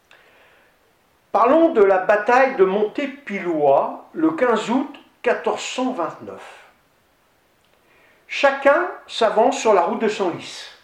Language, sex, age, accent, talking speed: French, male, 50-69, French, 95 wpm